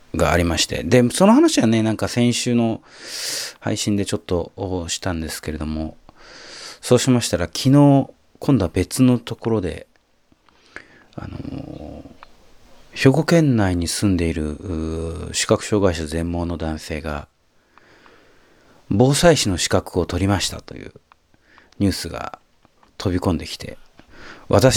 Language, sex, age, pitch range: Japanese, male, 40-59, 85-115 Hz